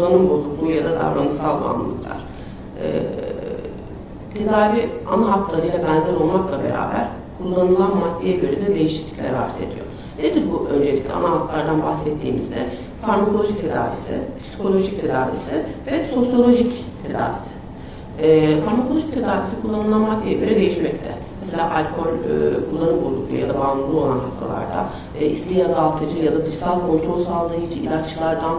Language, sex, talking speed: Turkish, female, 120 wpm